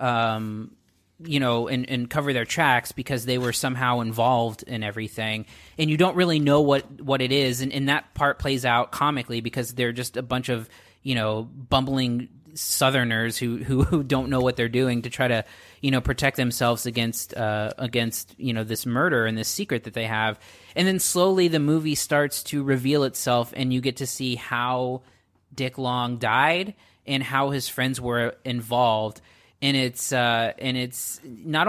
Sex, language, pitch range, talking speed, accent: male, English, 120-140 Hz, 185 wpm, American